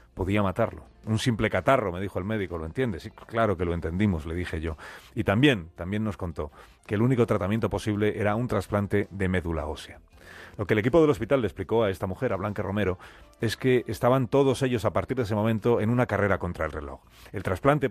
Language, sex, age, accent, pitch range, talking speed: Spanish, male, 40-59, Spanish, 95-120 Hz, 225 wpm